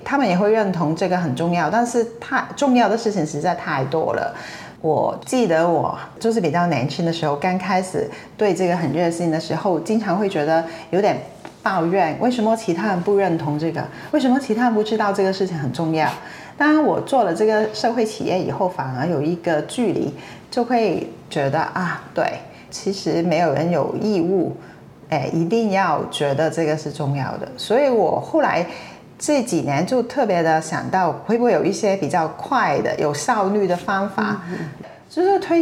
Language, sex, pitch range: Chinese, female, 165-225 Hz